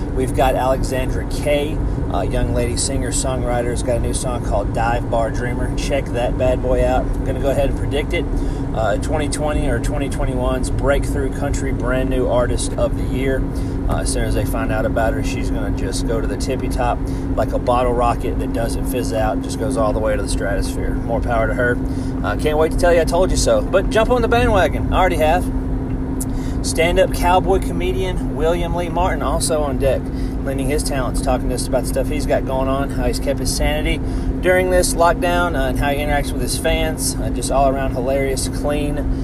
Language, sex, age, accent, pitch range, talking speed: English, male, 40-59, American, 120-135 Hz, 215 wpm